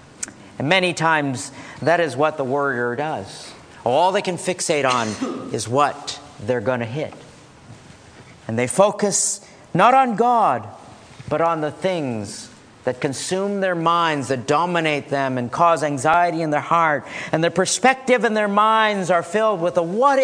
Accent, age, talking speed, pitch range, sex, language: American, 50-69, 160 wpm, 160-235 Hz, male, English